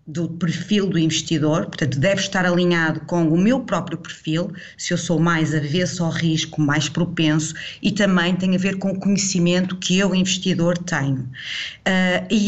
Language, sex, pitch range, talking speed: Portuguese, female, 165-195 Hz, 170 wpm